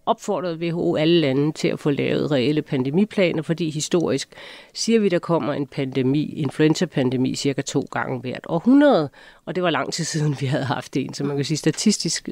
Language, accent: Danish, native